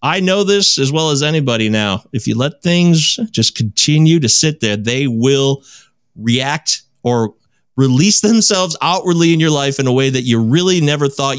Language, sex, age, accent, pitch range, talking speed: English, male, 30-49, American, 125-180 Hz, 185 wpm